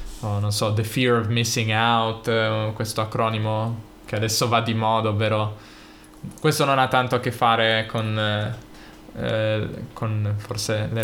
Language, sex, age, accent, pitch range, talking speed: Italian, male, 10-29, native, 110-125 Hz, 150 wpm